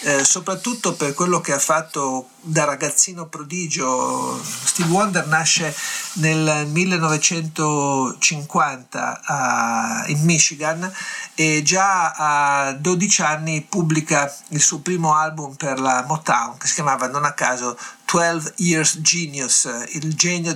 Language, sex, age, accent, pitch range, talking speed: Italian, male, 50-69, native, 145-165 Hz, 125 wpm